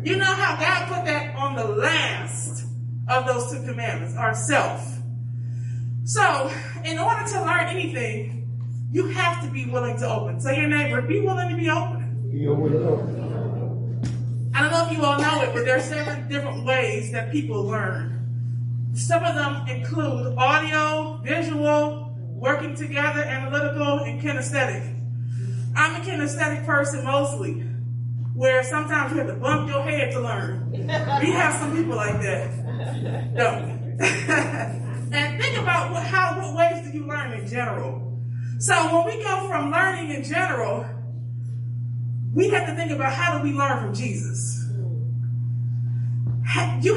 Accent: American